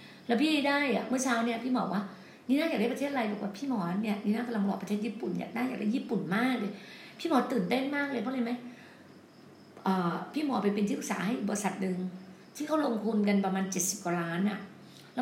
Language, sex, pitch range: Thai, female, 205-250 Hz